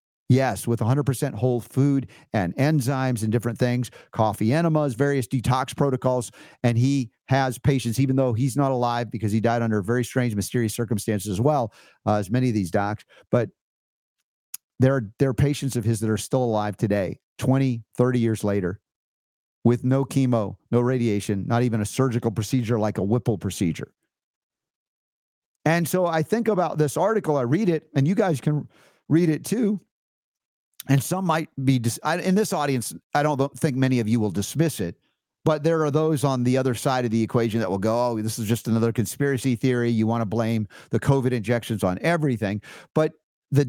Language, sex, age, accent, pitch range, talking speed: English, male, 50-69, American, 115-145 Hz, 185 wpm